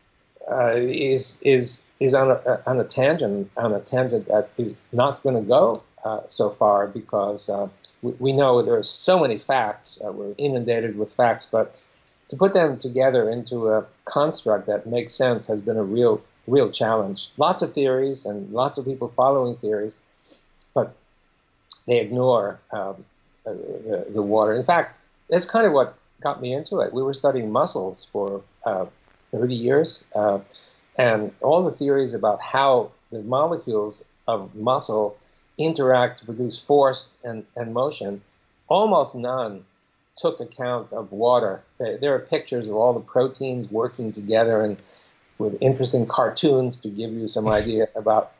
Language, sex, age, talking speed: English, male, 60-79, 160 wpm